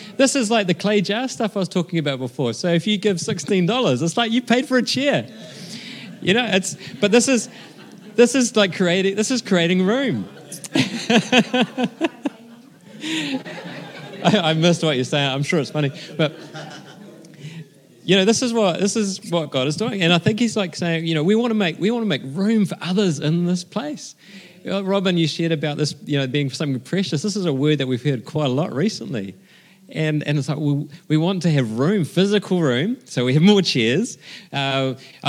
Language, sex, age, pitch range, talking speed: English, male, 30-49, 145-205 Hz, 210 wpm